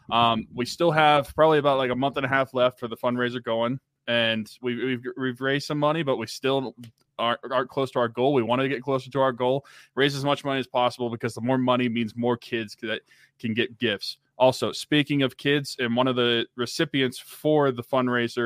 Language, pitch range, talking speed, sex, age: English, 115-135 Hz, 230 wpm, male, 20-39